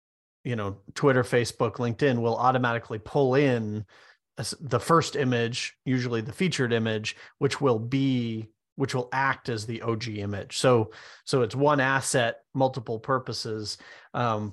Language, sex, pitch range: English, male, 110-135 Hz